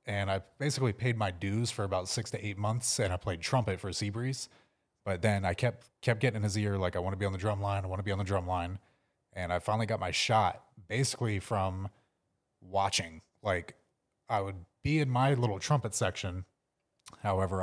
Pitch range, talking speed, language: 95-110 Hz, 220 wpm, English